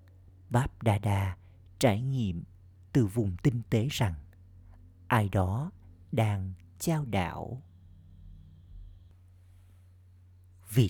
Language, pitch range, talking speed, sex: Vietnamese, 90-115 Hz, 90 wpm, male